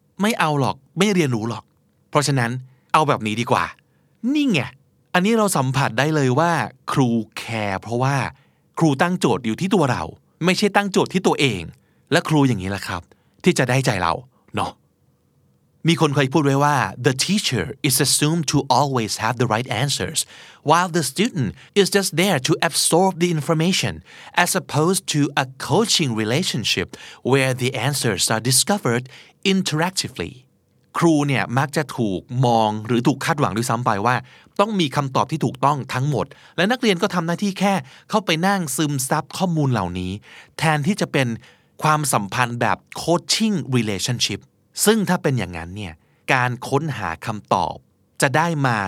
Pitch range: 120-170 Hz